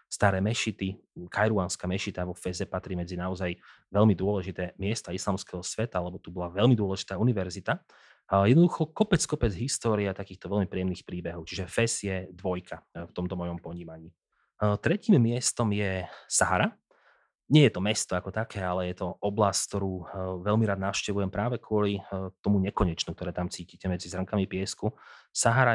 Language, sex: Slovak, male